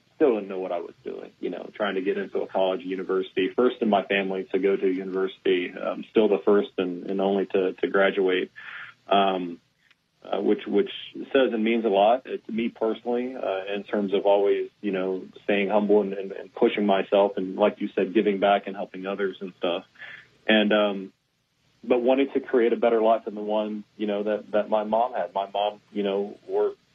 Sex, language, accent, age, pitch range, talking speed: male, English, American, 40-59, 95-110 Hz, 210 wpm